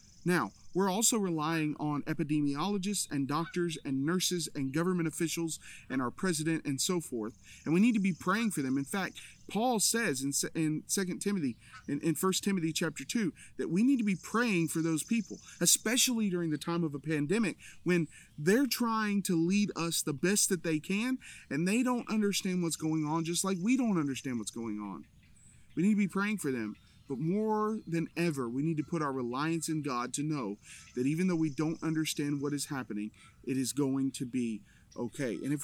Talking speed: 200 wpm